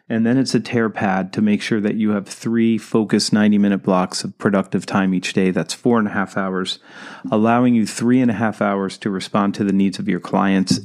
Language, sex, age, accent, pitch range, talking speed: English, male, 40-59, American, 100-120 Hz, 230 wpm